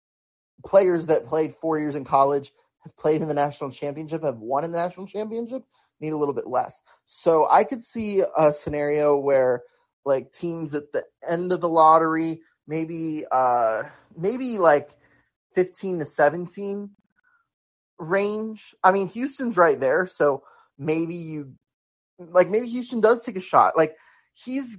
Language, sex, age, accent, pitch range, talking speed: English, male, 20-39, American, 145-195 Hz, 155 wpm